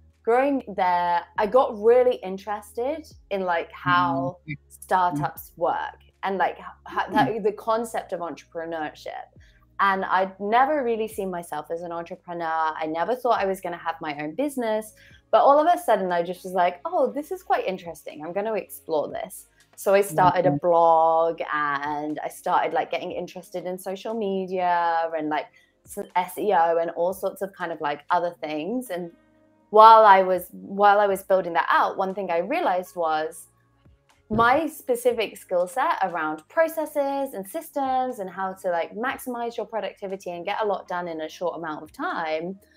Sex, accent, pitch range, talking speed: female, British, 170-245 Hz, 175 wpm